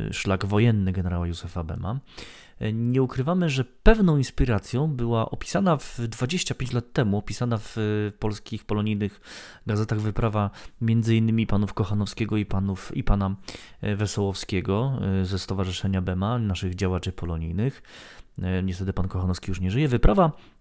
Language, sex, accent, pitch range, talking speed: Polish, male, native, 95-120 Hz, 130 wpm